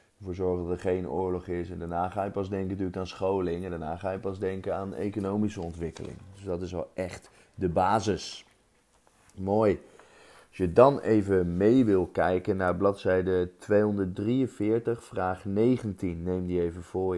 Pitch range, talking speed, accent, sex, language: 95-120 Hz, 170 wpm, Dutch, male, Dutch